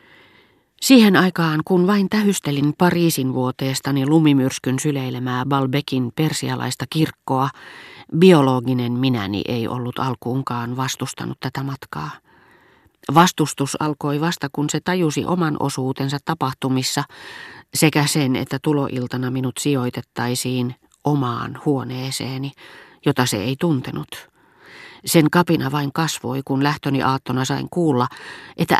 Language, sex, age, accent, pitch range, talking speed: Finnish, female, 40-59, native, 125-155 Hz, 105 wpm